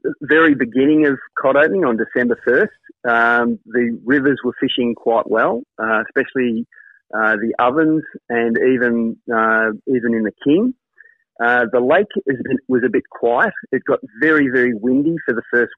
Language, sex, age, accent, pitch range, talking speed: English, male, 30-49, Australian, 115-140 Hz, 170 wpm